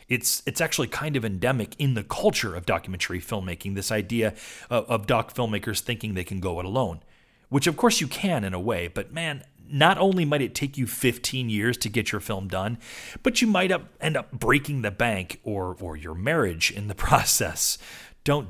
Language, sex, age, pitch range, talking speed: English, male, 30-49, 100-140 Hz, 210 wpm